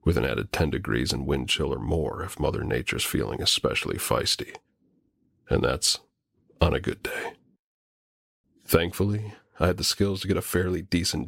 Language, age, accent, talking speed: English, 40-59, American, 170 wpm